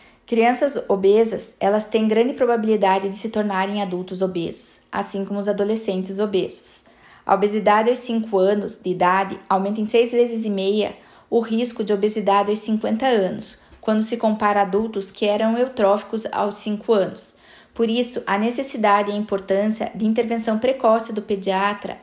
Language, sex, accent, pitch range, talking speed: Portuguese, female, Brazilian, 200-235 Hz, 160 wpm